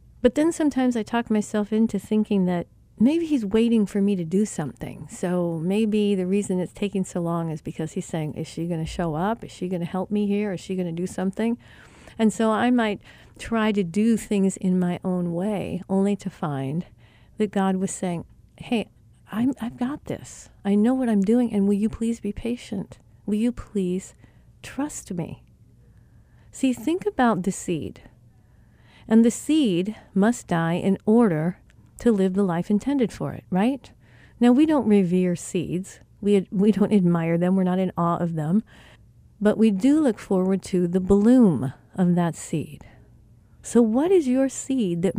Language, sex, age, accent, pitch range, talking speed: English, female, 50-69, American, 175-225 Hz, 190 wpm